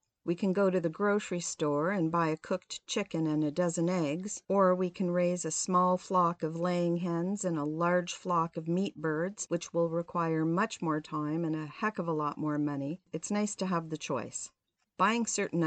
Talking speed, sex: 210 wpm, female